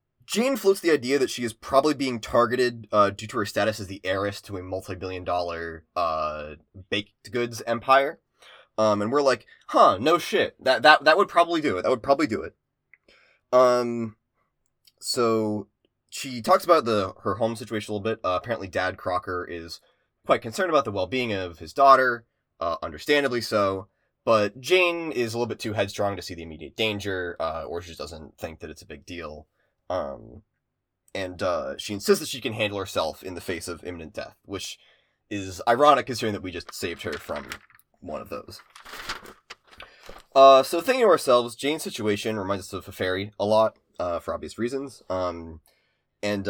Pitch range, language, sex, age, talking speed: 95-125 Hz, English, male, 20-39, 185 wpm